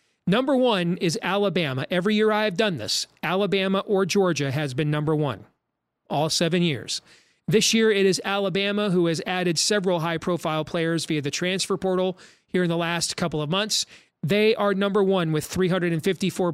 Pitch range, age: 160-195 Hz, 40-59